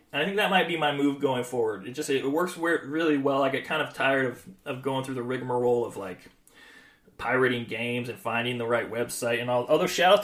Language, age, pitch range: English, 30-49, 125-155 Hz